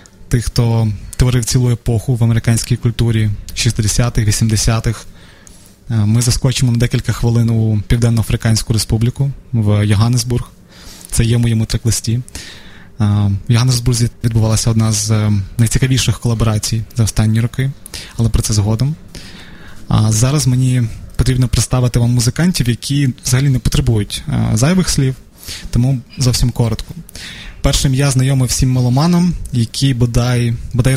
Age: 20-39